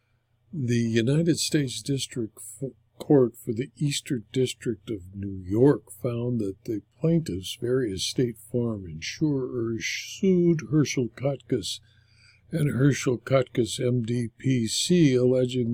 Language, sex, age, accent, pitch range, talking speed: English, male, 60-79, American, 110-135 Hz, 105 wpm